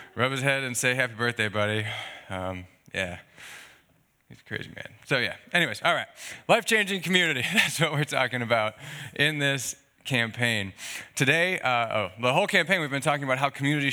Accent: American